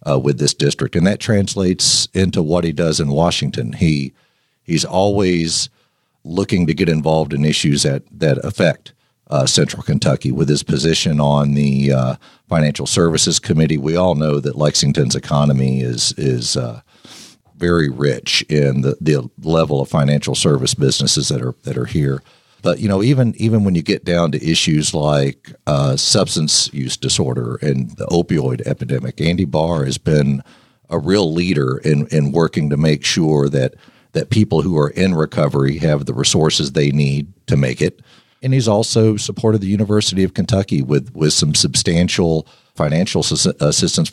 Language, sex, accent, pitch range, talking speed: English, male, American, 70-95 Hz, 170 wpm